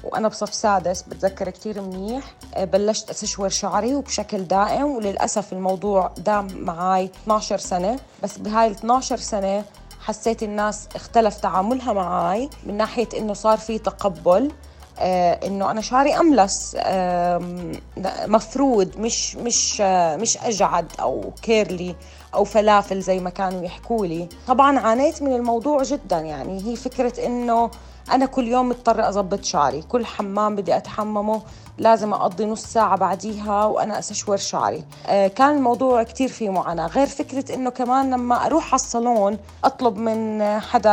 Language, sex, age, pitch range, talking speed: Arabic, female, 30-49, 200-245 Hz, 135 wpm